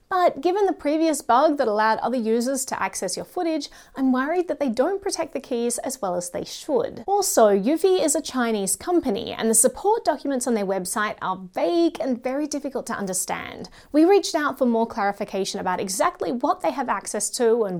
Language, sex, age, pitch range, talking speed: English, female, 30-49, 225-315 Hz, 200 wpm